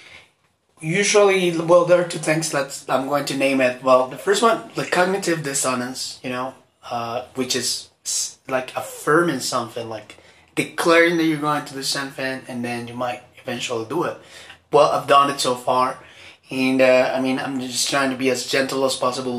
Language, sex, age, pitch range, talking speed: English, male, 20-39, 125-150 Hz, 190 wpm